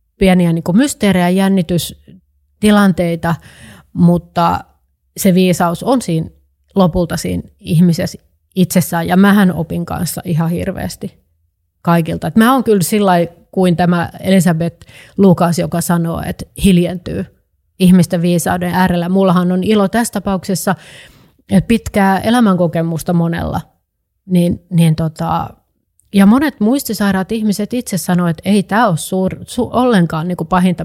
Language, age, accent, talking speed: Finnish, 30-49, native, 125 wpm